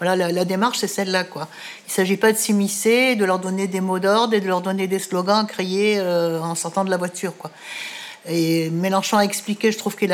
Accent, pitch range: French, 175-210 Hz